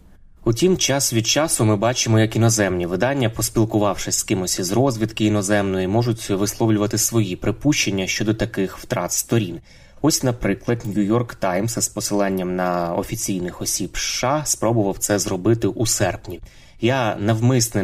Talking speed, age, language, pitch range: 140 wpm, 20-39, Ukrainian, 95-115 Hz